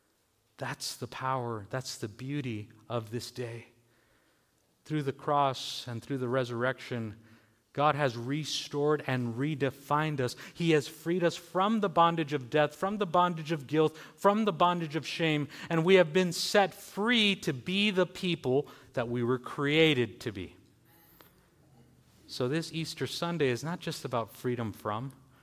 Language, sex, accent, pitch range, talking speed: English, male, American, 125-180 Hz, 160 wpm